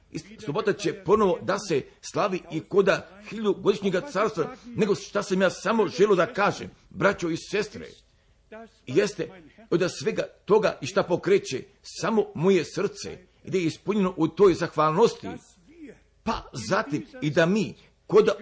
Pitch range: 170-215 Hz